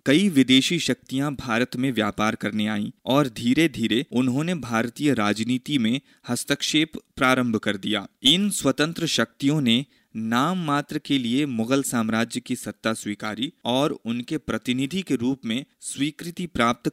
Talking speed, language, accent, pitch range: 140 wpm, Hindi, native, 115-150 Hz